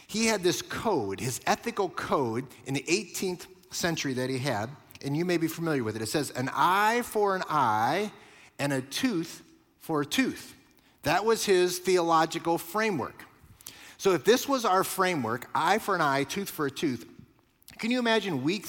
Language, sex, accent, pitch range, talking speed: English, male, American, 140-190 Hz, 185 wpm